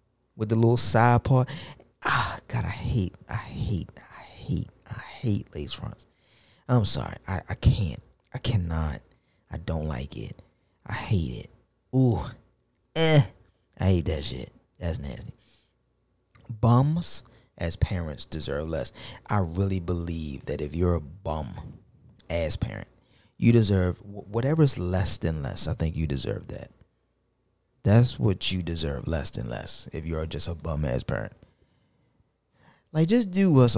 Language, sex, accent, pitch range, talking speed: English, male, American, 85-120 Hz, 150 wpm